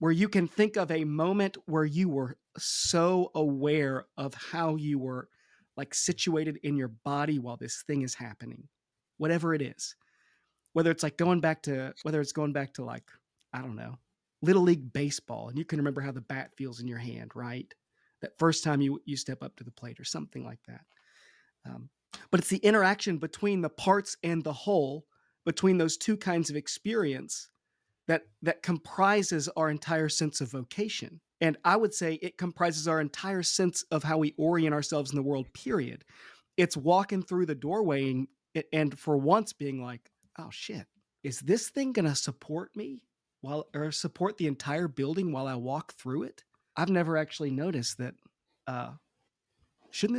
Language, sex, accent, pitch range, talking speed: English, male, American, 140-175 Hz, 185 wpm